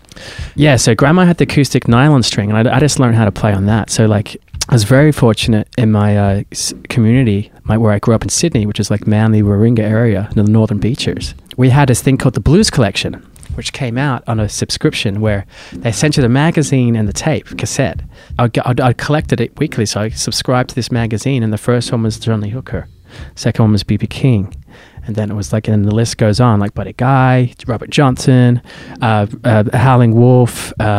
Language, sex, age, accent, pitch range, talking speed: English, male, 20-39, Australian, 110-130 Hz, 210 wpm